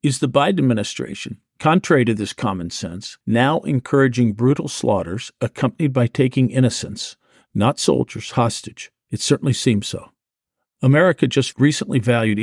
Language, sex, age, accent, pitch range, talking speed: English, male, 50-69, American, 110-140 Hz, 135 wpm